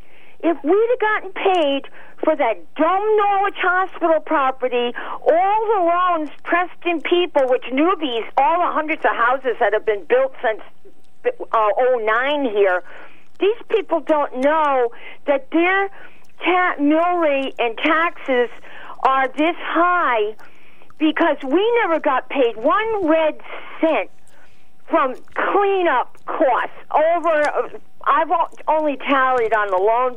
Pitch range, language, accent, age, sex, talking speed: 255-360 Hz, English, American, 50-69, female, 130 wpm